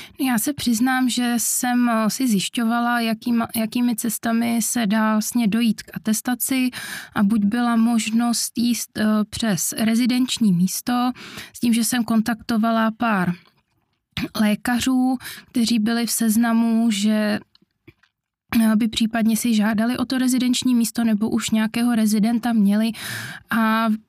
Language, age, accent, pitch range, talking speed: Czech, 20-39, native, 220-235 Hz, 125 wpm